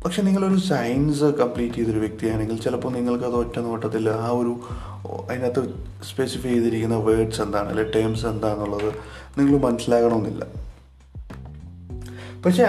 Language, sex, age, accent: Malayalam, male, 30-49, native